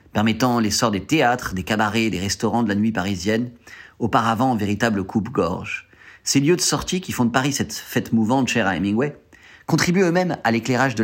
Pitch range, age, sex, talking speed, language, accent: 105-135 Hz, 30-49, male, 190 wpm, French, French